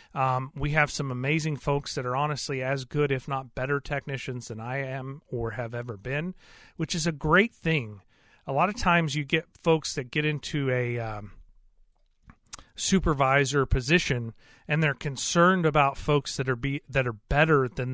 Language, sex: English, male